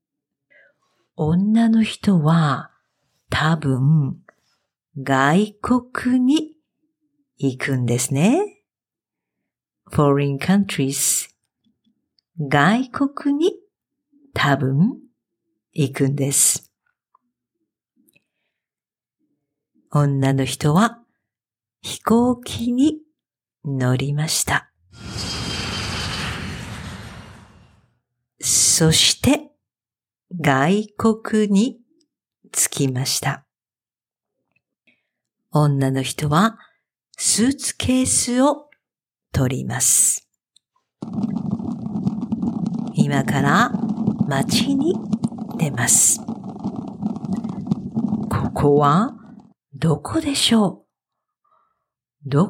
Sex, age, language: female, 50-69, Japanese